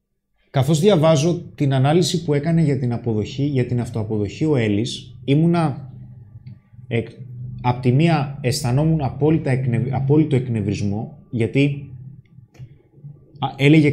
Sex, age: male, 20-39